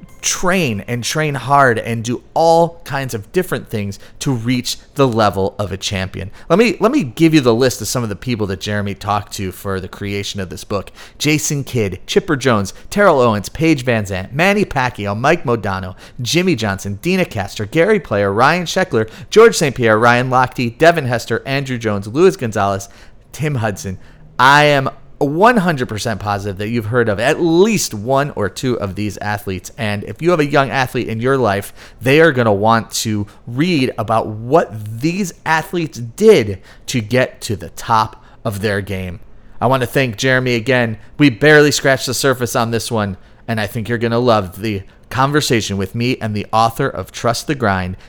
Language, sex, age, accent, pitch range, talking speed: English, male, 30-49, American, 105-140 Hz, 190 wpm